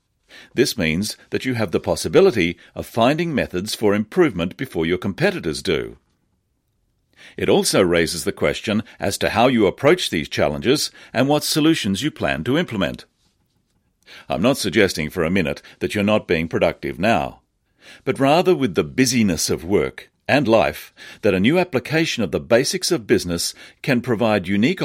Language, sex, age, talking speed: English, male, 50-69, 165 wpm